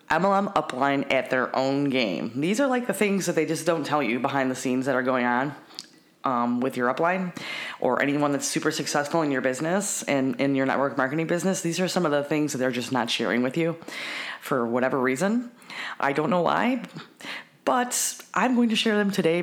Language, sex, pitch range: English, female, 130-165 Hz